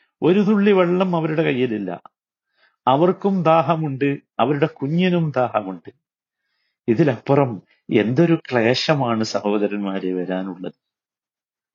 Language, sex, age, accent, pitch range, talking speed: Malayalam, male, 50-69, native, 120-180 Hz, 75 wpm